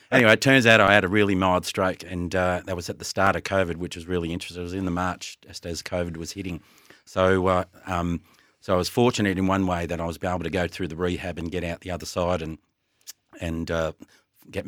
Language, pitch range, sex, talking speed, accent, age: English, 85-100 Hz, male, 255 wpm, Australian, 40-59